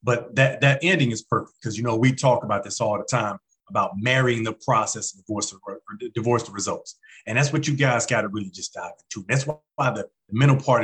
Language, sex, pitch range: English, male, 120-145 Hz